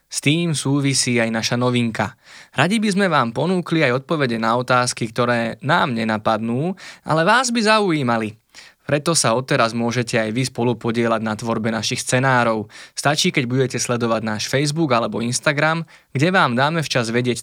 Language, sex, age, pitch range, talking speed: Slovak, male, 20-39, 115-140 Hz, 160 wpm